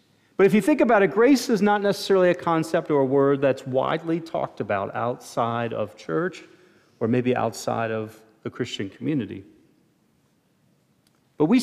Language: English